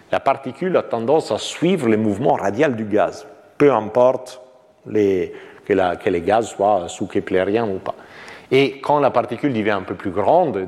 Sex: male